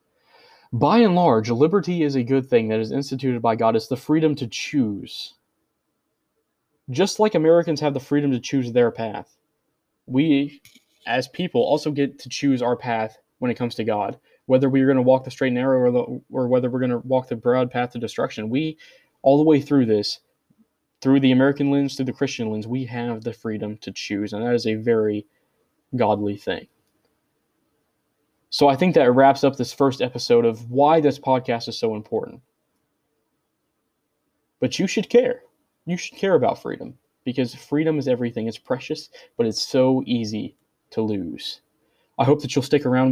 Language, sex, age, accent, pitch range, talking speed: English, male, 20-39, American, 120-150 Hz, 185 wpm